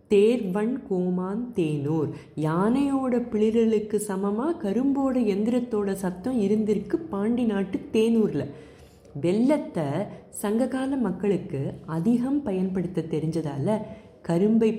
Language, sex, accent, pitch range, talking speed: Tamil, female, native, 160-230 Hz, 75 wpm